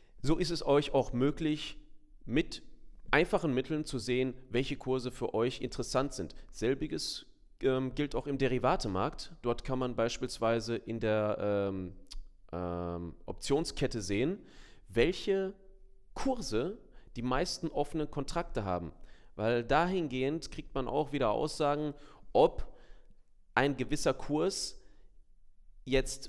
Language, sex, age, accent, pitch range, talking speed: German, male, 30-49, German, 115-145 Hz, 120 wpm